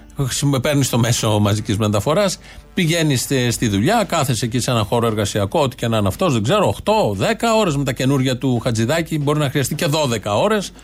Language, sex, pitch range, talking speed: Greek, male, 125-170 Hz, 185 wpm